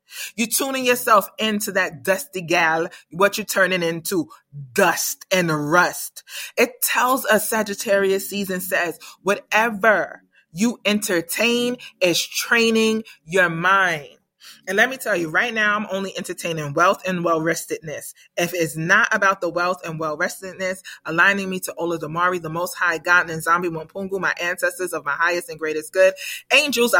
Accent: American